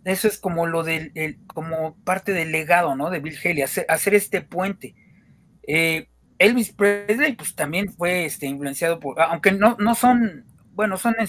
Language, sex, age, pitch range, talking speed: Spanish, male, 40-59, 140-190 Hz, 180 wpm